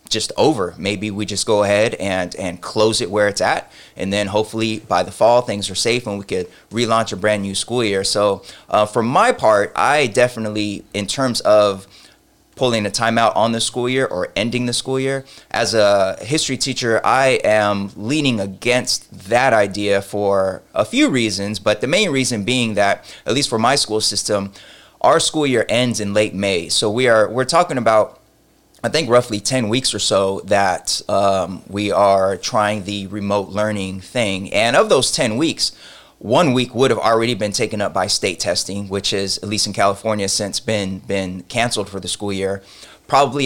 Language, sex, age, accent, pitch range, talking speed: English, male, 20-39, American, 100-120 Hz, 195 wpm